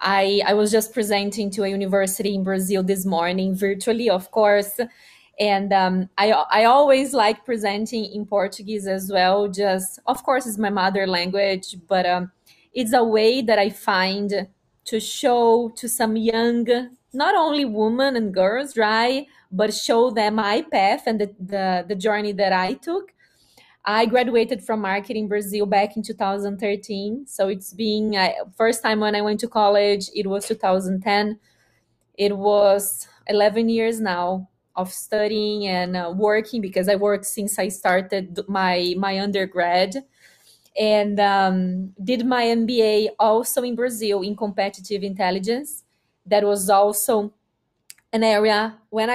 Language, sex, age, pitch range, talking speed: English, female, 20-39, 195-225 Hz, 150 wpm